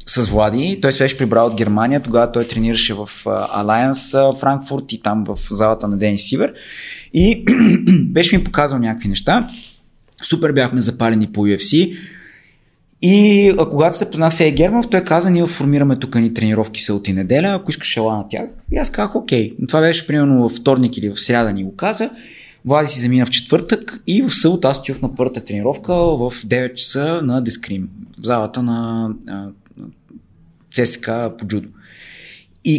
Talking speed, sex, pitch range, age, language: 170 wpm, male, 115-185 Hz, 20-39, Bulgarian